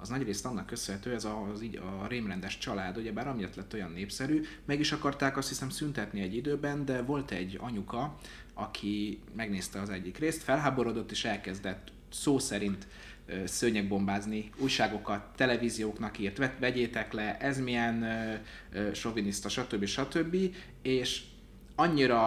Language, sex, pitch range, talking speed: Hungarian, male, 100-125 Hz, 145 wpm